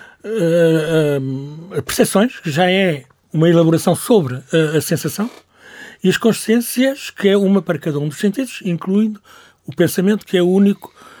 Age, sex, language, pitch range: 60-79, male, Portuguese, 130-185 Hz